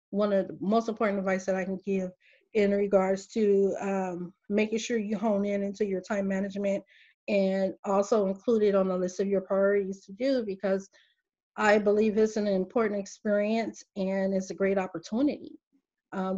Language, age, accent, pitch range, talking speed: English, 30-49, American, 190-220 Hz, 175 wpm